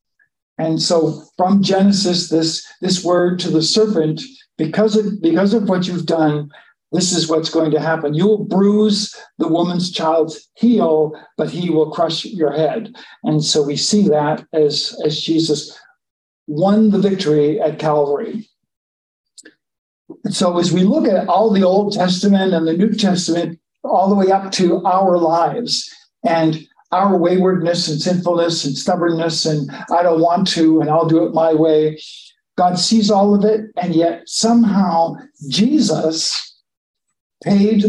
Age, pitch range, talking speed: 60-79, 160-205 Hz, 155 wpm